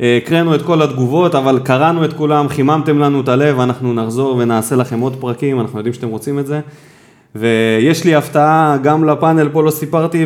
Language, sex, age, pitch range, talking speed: Hebrew, male, 20-39, 125-160 Hz, 185 wpm